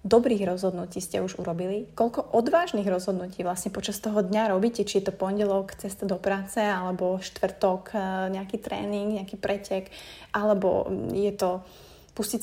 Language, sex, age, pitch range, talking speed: Slovak, female, 20-39, 185-215 Hz, 145 wpm